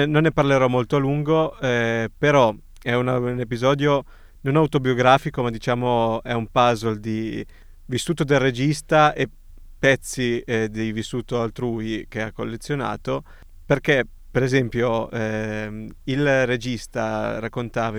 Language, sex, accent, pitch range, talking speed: Italian, male, native, 110-135 Hz, 130 wpm